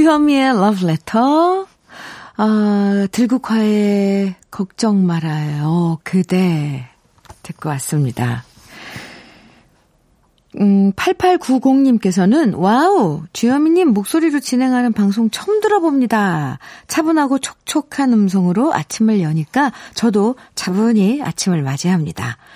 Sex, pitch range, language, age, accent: female, 185-265 Hz, Korean, 50-69, native